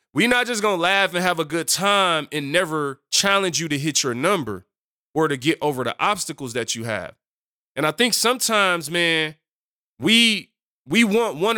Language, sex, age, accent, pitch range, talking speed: English, male, 20-39, American, 150-200 Hz, 190 wpm